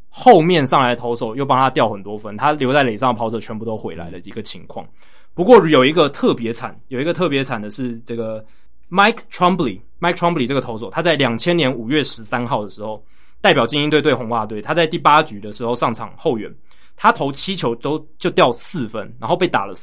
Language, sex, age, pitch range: Chinese, male, 20-39, 115-155 Hz